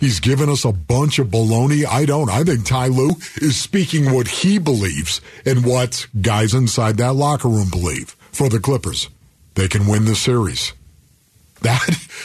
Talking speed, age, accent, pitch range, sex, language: 170 wpm, 50-69, American, 125-180 Hz, male, English